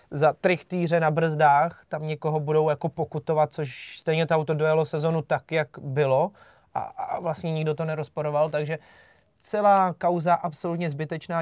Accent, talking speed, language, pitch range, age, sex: native, 150 wpm, Czech, 150-175 Hz, 20-39, male